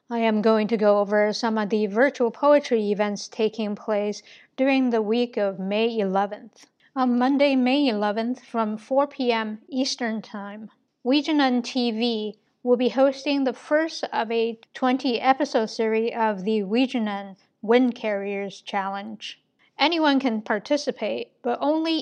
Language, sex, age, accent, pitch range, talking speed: English, female, 50-69, American, 220-265 Hz, 140 wpm